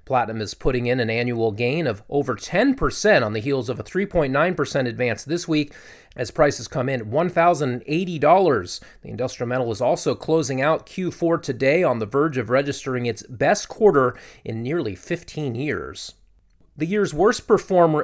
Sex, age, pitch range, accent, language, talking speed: male, 30-49, 120-170 Hz, American, English, 165 wpm